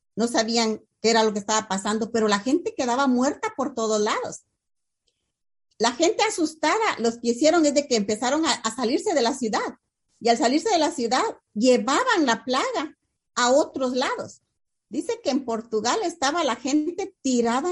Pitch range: 215-280 Hz